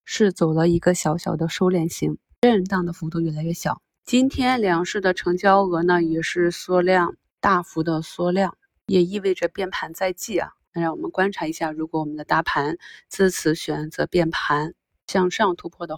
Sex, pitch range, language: female, 170-195 Hz, Chinese